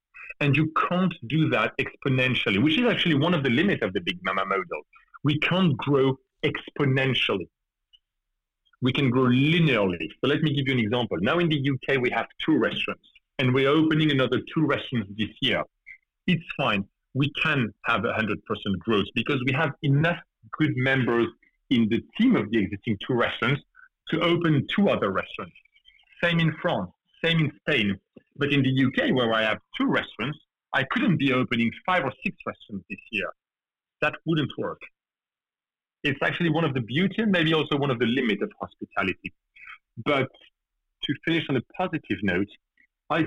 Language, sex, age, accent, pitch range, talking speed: English, male, 40-59, French, 115-160 Hz, 175 wpm